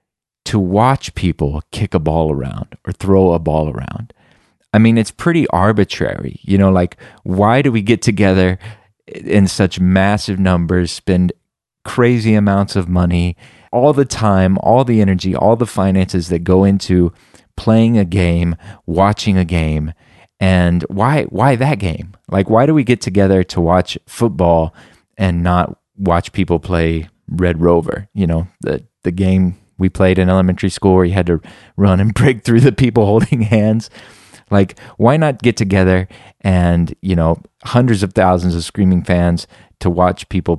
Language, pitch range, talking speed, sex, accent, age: English, 85-105 Hz, 165 wpm, male, American, 30-49